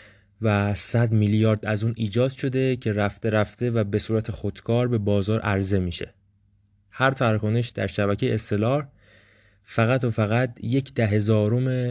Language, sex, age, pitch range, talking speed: English, male, 20-39, 100-120 Hz, 145 wpm